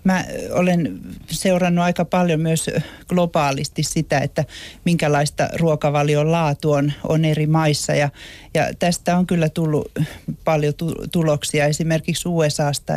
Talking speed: 115 wpm